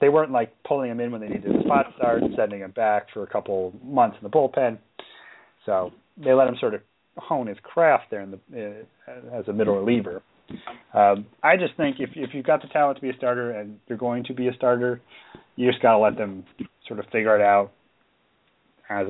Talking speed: 235 wpm